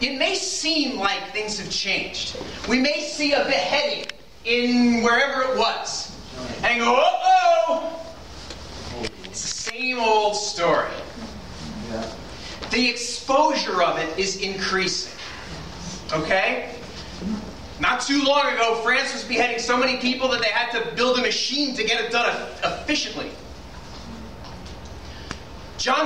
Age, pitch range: 30-49, 235-330 Hz